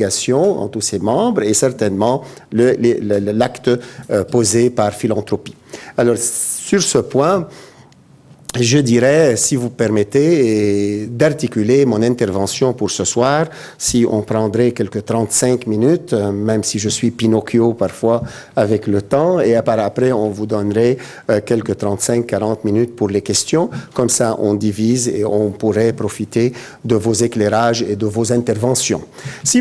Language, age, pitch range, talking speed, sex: French, 50-69, 110-140 Hz, 145 wpm, male